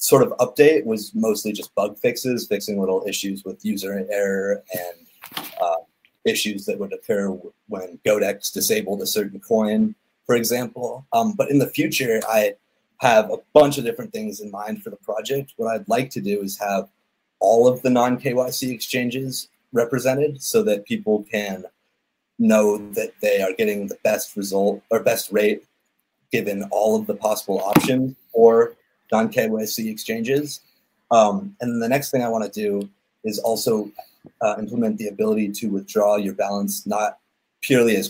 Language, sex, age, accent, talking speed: English, male, 30-49, American, 160 wpm